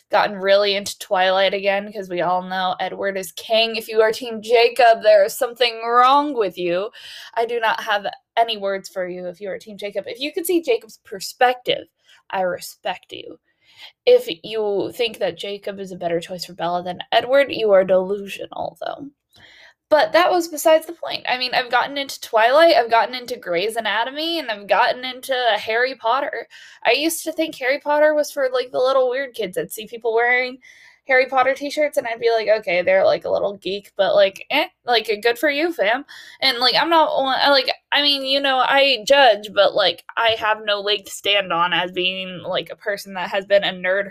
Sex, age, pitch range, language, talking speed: female, 10-29, 195-275 Hz, English, 210 wpm